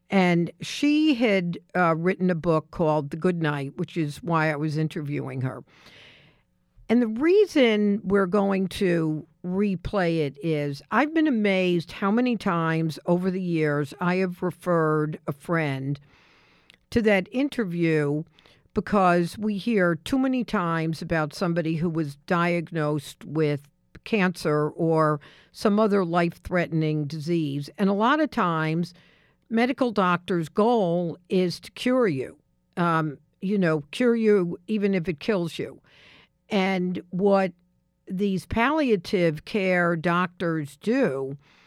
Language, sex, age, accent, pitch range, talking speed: English, female, 50-69, American, 160-210 Hz, 130 wpm